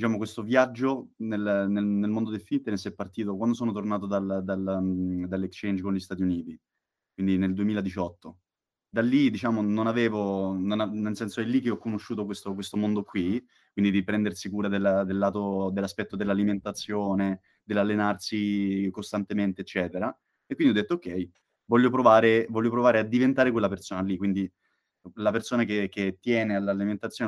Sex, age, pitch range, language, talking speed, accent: male, 20-39, 95-115 Hz, Italian, 165 wpm, native